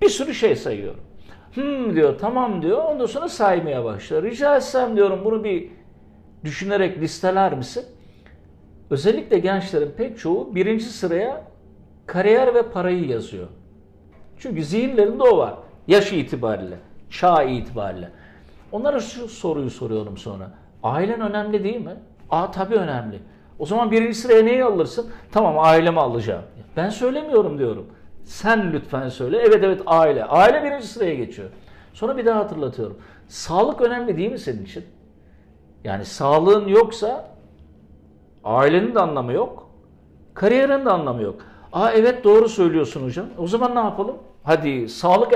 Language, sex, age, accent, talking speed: Turkish, male, 60-79, native, 140 wpm